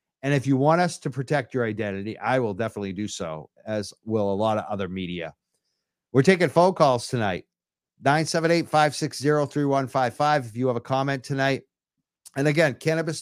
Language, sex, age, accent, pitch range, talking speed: English, male, 50-69, American, 120-160 Hz, 165 wpm